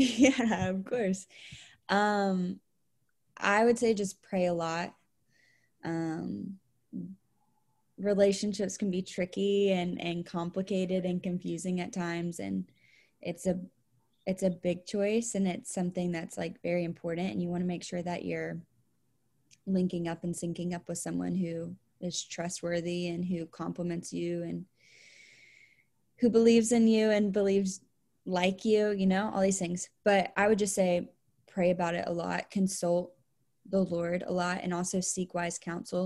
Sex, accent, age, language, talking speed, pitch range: female, American, 20-39, English, 155 wpm, 170-190 Hz